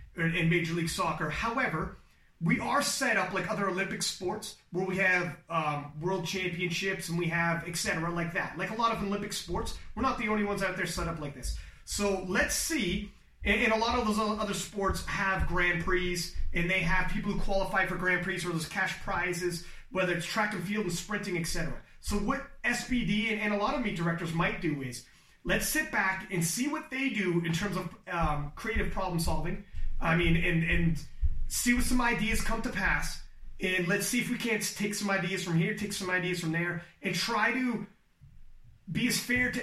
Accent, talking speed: American, 210 wpm